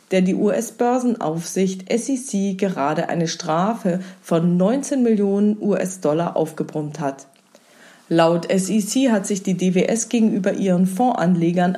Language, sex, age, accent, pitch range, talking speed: German, female, 40-59, German, 170-220 Hz, 110 wpm